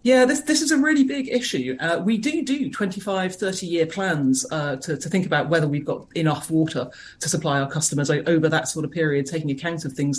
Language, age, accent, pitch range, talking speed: English, 40-59, British, 145-175 Hz, 230 wpm